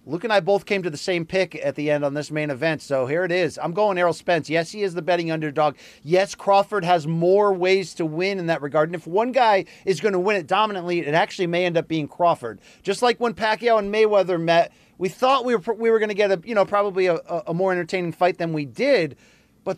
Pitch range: 165-200 Hz